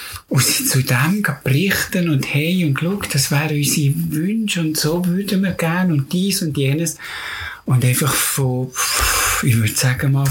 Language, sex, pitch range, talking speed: German, male, 125-155 Hz, 170 wpm